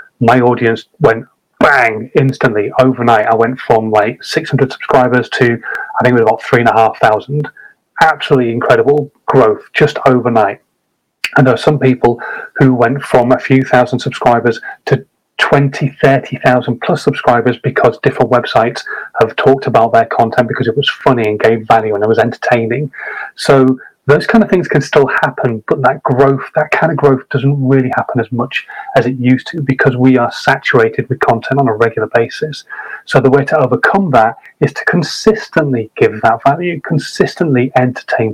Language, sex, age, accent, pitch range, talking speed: English, male, 30-49, British, 120-145 Hz, 175 wpm